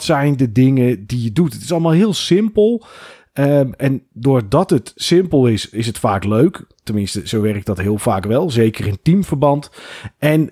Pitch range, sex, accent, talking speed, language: 110-135 Hz, male, Dutch, 175 wpm, Dutch